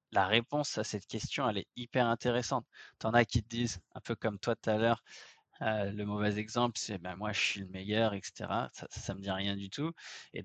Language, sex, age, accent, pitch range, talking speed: French, male, 20-39, French, 105-135 Hz, 235 wpm